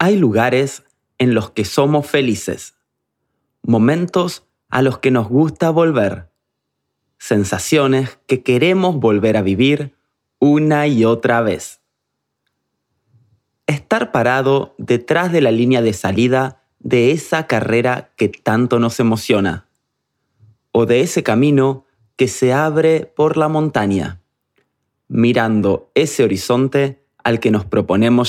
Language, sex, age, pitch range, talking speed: Spanish, male, 30-49, 110-150 Hz, 120 wpm